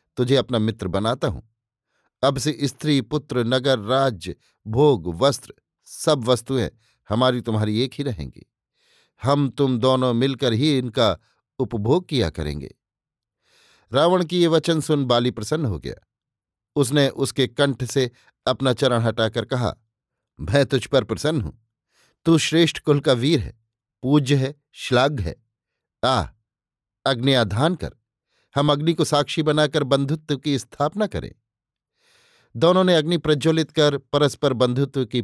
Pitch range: 115-145 Hz